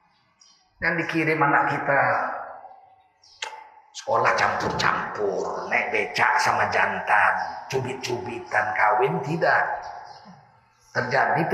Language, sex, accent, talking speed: Indonesian, male, native, 75 wpm